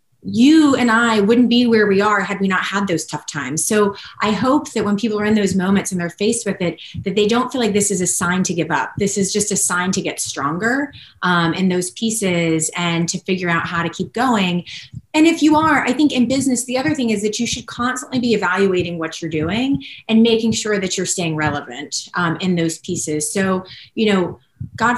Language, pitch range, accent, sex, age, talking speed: English, 175-230 Hz, American, female, 30-49, 235 wpm